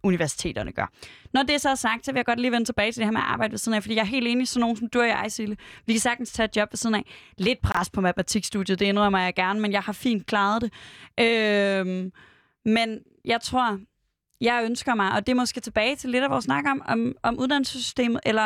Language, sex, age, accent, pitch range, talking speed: Danish, female, 20-39, native, 205-255 Hz, 260 wpm